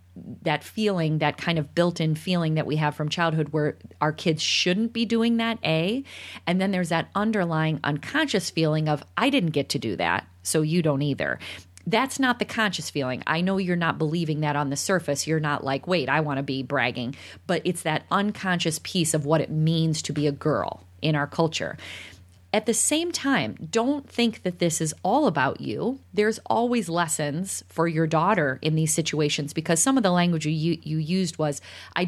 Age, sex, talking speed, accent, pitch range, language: 30-49, female, 205 wpm, American, 150-185 Hz, English